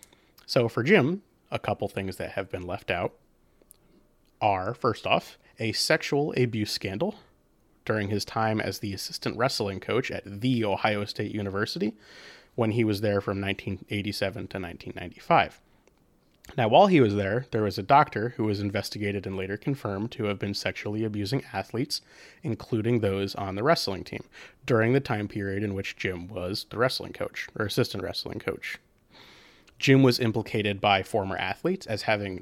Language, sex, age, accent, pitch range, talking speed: English, male, 30-49, American, 100-125 Hz, 165 wpm